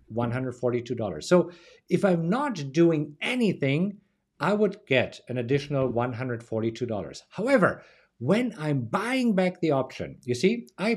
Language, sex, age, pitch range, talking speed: English, male, 50-69, 125-185 Hz, 125 wpm